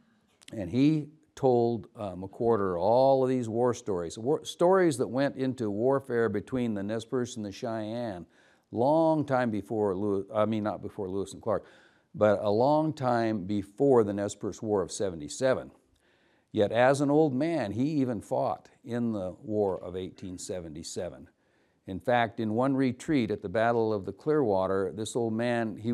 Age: 60-79